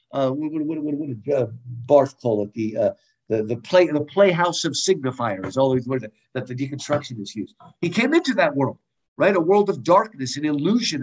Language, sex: English, male